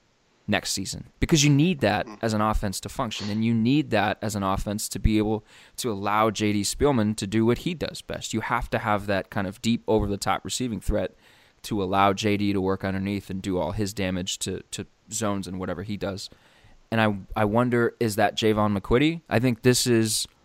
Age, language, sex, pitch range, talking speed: 20-39, English, male, 100-115 Hz, 210 wpm